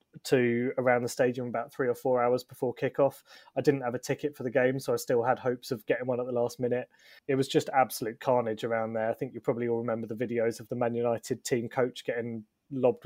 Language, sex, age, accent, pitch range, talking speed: English, male, 20-39, British, 120-135 Hz, 250 wpm